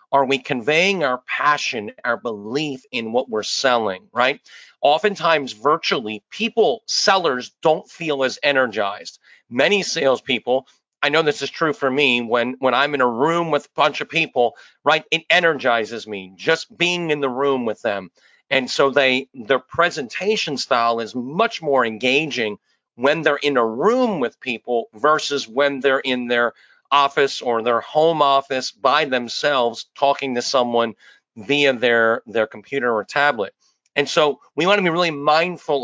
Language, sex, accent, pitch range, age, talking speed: English, male, American, 125-165 Hz, 40-59, 160 wpm